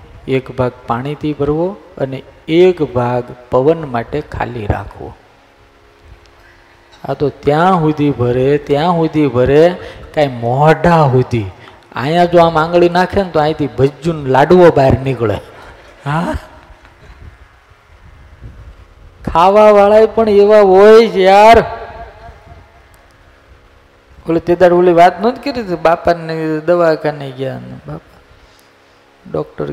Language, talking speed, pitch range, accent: Gujarati, 50 wpm, 110-180 Hz, native